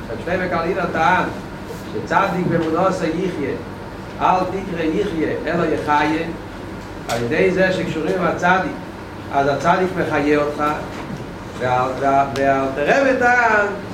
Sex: male